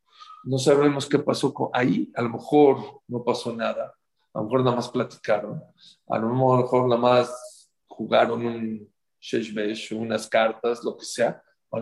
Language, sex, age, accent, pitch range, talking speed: English, male, 50-69, Mexican, 120-150 Hz, 150 wpm